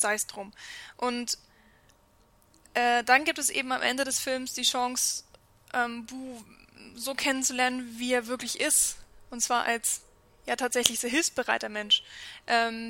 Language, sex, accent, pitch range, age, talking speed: German, female, German, 225-255 Hz, 10-29, 155 wpm